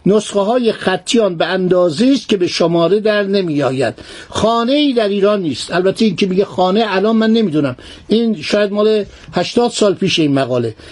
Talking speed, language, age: 180 wpm, Persian, 50-69